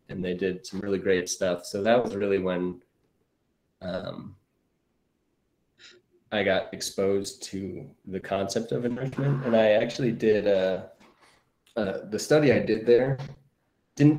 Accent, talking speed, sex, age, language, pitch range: American, 140 wpm, male, 20-39, English, 95-115 Hz